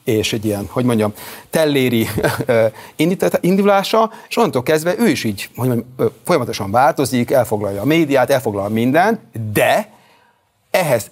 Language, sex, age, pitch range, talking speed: Hungarian, male, 30-49, 120-165 Hz, 130 wpm